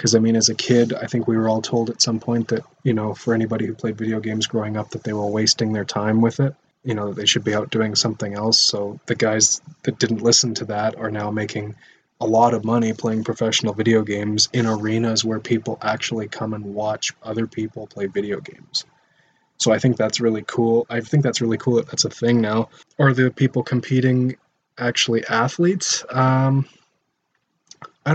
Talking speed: 210 wpm